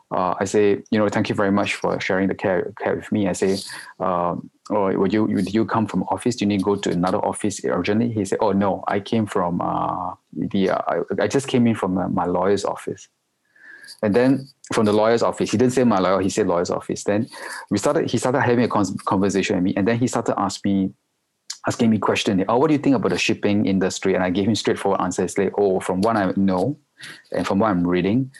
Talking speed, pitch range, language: 250 wpm, 95-115 Hz, English